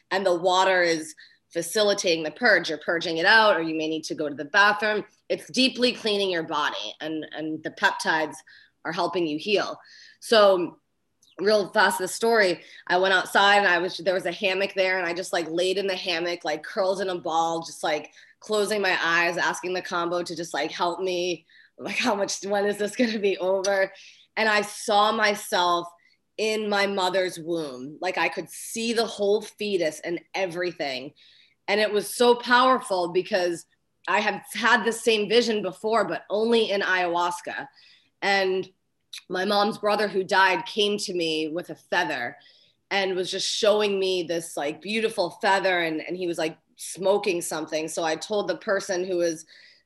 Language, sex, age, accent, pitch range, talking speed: English, female, 20-39, American, 170-205 Hz, 185 wpm